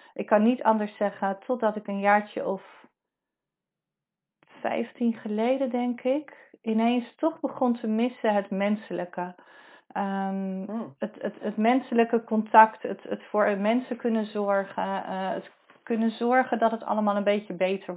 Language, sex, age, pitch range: Dutch, female, 40-59, 190-235 Hz